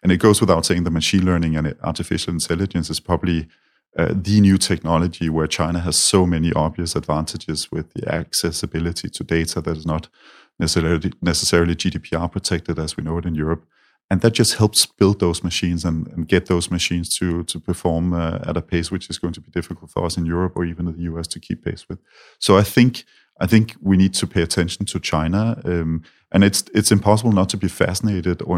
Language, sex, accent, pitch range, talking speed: English, male, Danish, 80-95 Hz, 215 wpm